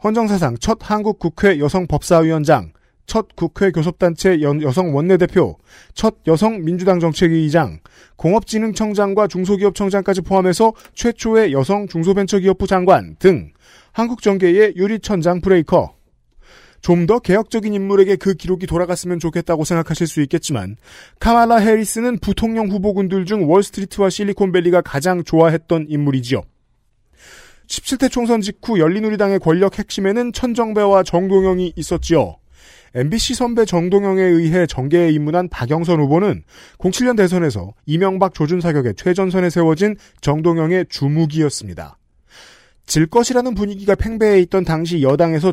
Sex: male